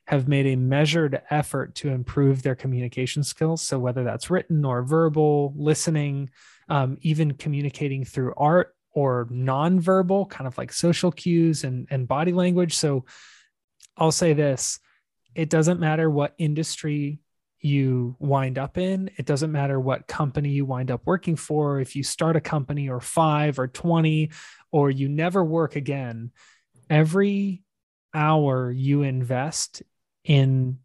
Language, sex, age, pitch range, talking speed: English, male, 20-39, 135-165 Hz, 145 wpm